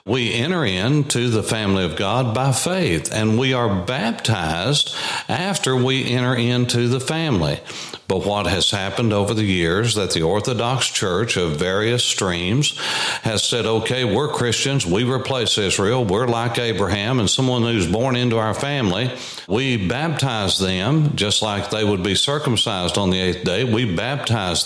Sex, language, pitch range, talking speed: male, English, 100-125 Hz, 160 wpm